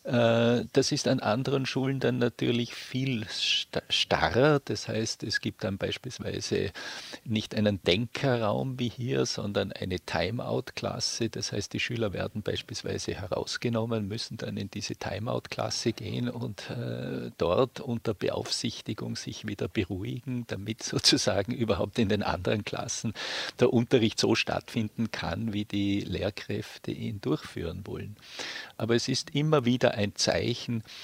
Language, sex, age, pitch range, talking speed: German, male, 50-69, 105-125 Hz, 130 wpm